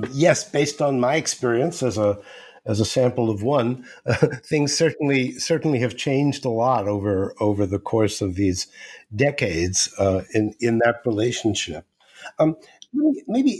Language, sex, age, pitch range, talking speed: English, male, 50-69, 110-155 Hz, 150 wpm